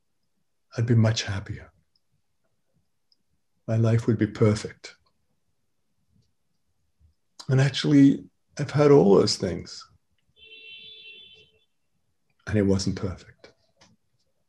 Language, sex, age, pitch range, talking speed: English, male, 50-69, 95-115 Hz, 85 wpm